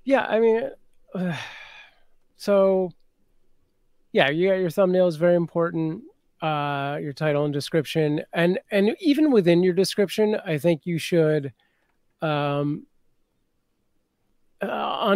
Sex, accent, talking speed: male, American, 120 wpm